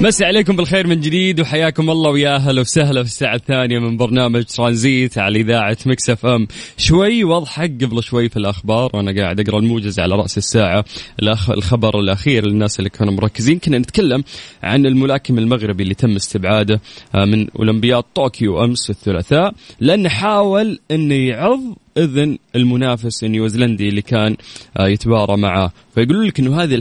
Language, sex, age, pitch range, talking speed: Arabic, male, 20-39, 105-130 Hz, 150 wpm